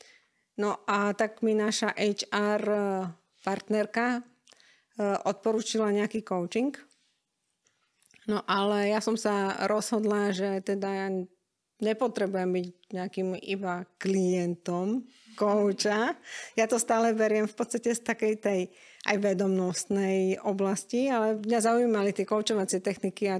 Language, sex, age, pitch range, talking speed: Slovak, female, 50-69, 190-215 Hz, 115 wpm